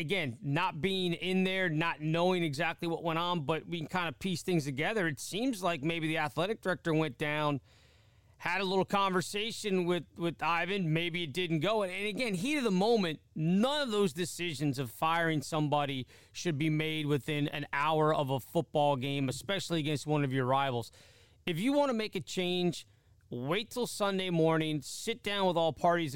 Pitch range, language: 150-190 Hz, English